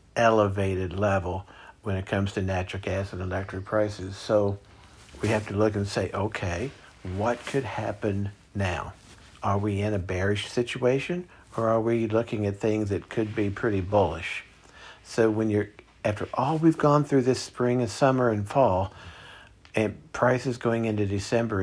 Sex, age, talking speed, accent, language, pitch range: male, 50-69, 165 wpm, American, English, 100-115 Hz